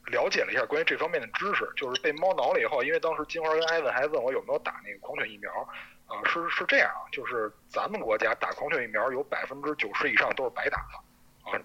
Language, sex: Chinese, male